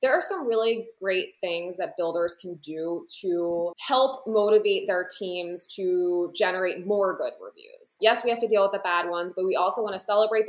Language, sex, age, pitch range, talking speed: English, female, 20-39, 175-215 Hz, 200 wpm